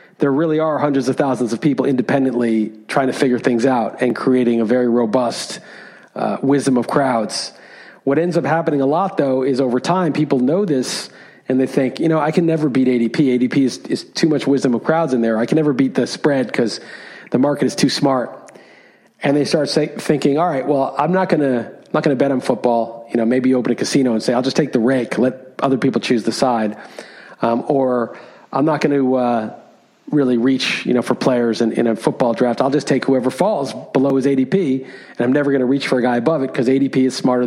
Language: English